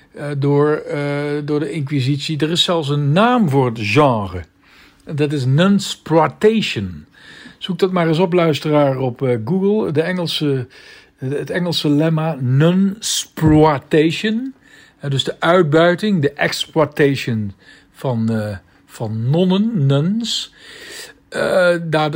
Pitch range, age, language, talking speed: 130-180 Hz, 50-69, Dutch, 125 wpm